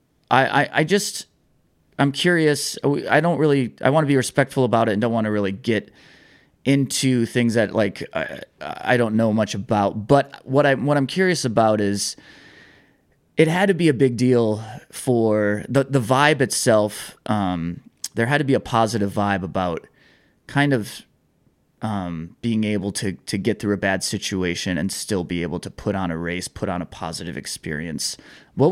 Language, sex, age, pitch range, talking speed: English, male, 20-39, 100-135 Hz, 180 wpm